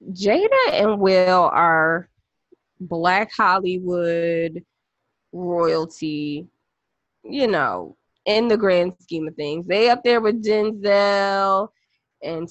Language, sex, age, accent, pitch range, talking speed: English, female, 20-39, American, 175-220 Hz, 100 wpm